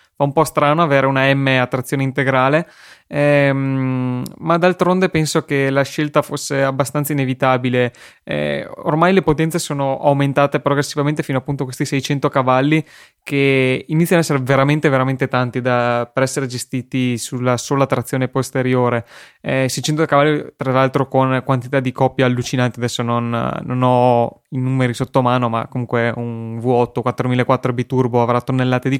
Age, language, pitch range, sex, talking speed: 20-39, Italian, 125-145 Hz, male, 155 wpm